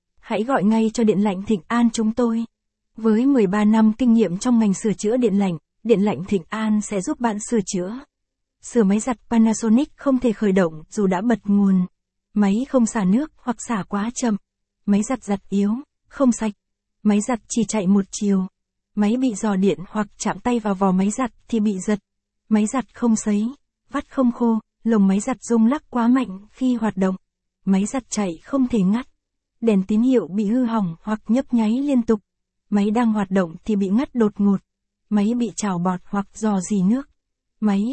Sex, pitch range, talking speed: female, 205-240 Hz, 205 wpm